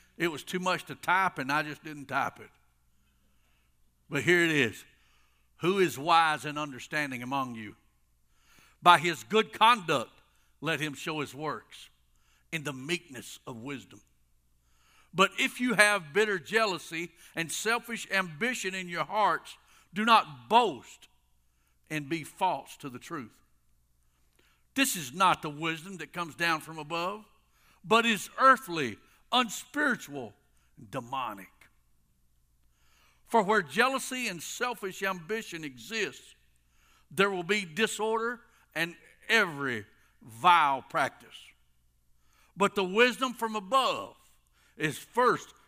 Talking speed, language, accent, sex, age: 125 wpm, English, American, male, 60-79